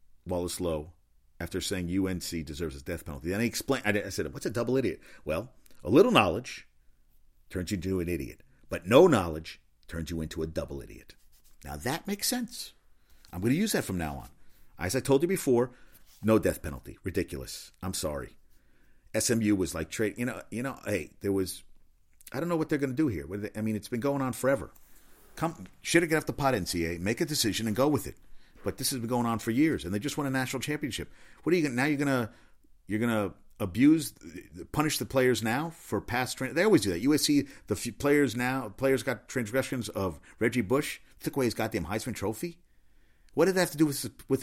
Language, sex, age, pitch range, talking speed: English, male, 50-69, 90-135 Hz, 215 wpm